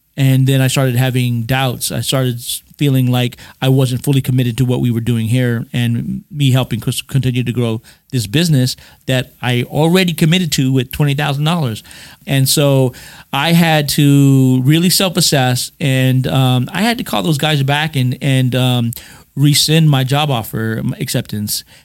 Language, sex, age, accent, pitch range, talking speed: English, male, 40-59, American, 125-150 Hz, 160 wpm